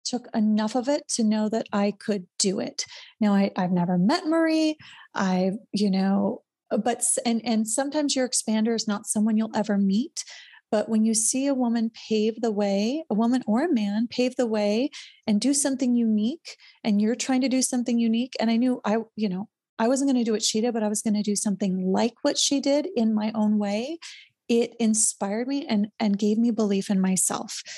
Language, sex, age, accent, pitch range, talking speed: English, female, 30-49, American, 210-255 Hz, 215 wpm